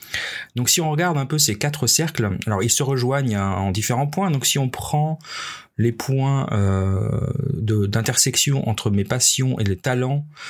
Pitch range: 95-130 Hz